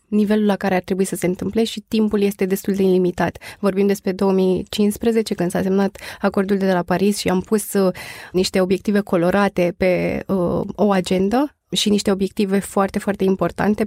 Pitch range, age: 185-215 Hz, 20-39